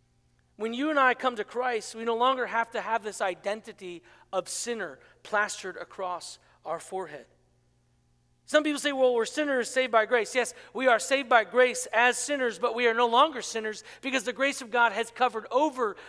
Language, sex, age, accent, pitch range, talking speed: English, male, 40-59, American, 195-255 Hz, 195 wpm